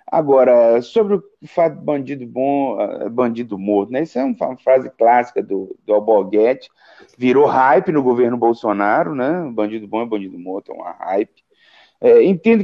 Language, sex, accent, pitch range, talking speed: Portuguese, male, Brazilian, 125-205 Hz, 160 wpm